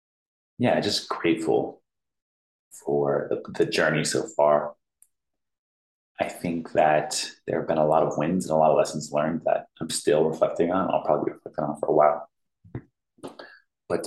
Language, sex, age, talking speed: English, male, 30-49, 165 wpm